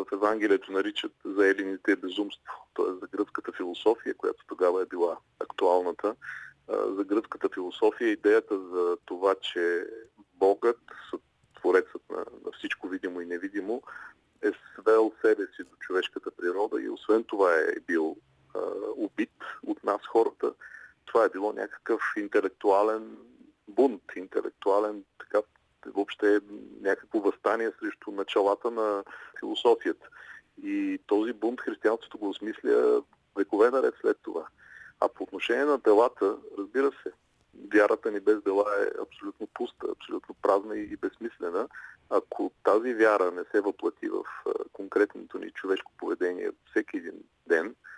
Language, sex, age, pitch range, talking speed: Bulgarian, male, 40-59, 335-435 Hz, 130 wpm